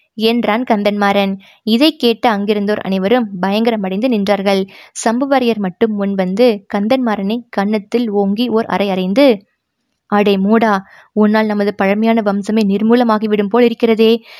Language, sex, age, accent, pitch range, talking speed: Tamil, female, 20-39, native, 195-225 Hz, 115 wpm